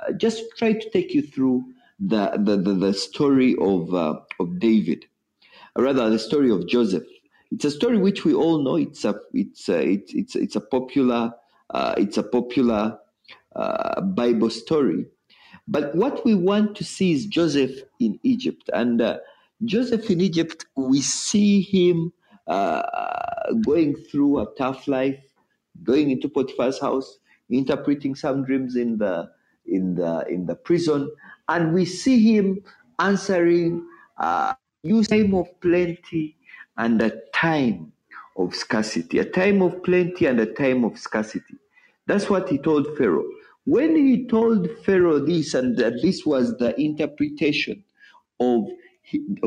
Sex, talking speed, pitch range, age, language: male, 150 wpm, 135-225 Hz, 50-69, English